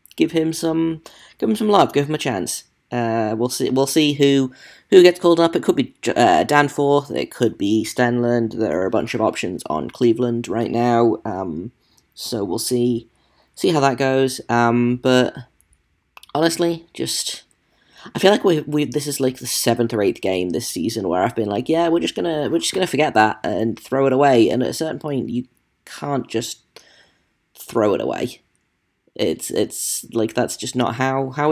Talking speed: 195 wpm